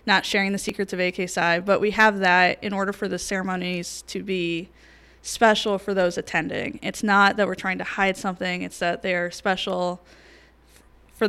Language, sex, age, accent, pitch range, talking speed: English, female, 10-29, American, 180-210 Hz, 185 wpm